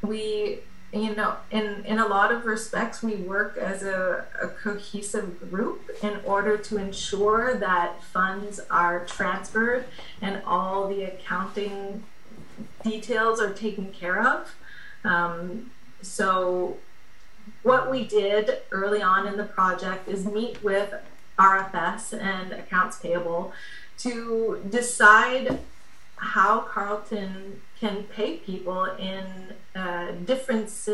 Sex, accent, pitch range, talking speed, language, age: female, American, 185-215 Hz, 115 wpm, English, 30-49